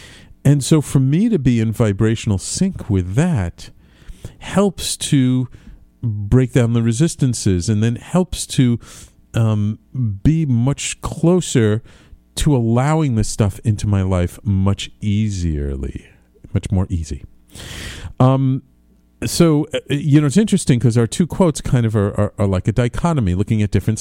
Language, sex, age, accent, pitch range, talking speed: English, male, 50-69, American, 95-130 Hz, 145 wpm